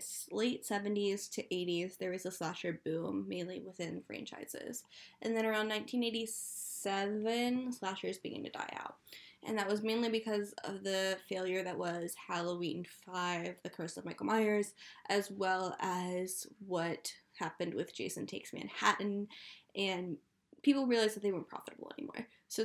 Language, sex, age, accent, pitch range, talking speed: English, female, 10-29, American, 185-220 Hz, 150 wpm